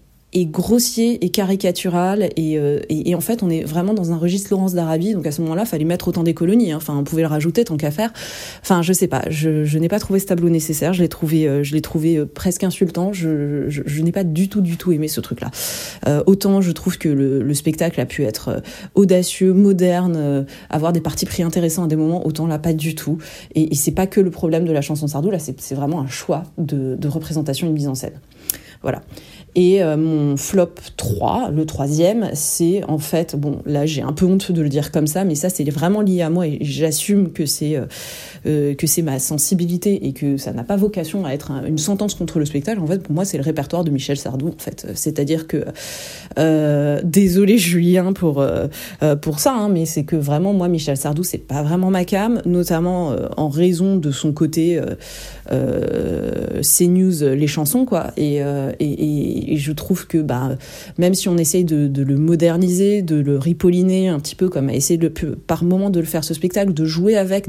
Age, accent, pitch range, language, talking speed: 20-39, French, 150-185 Hz, French, 230 wpm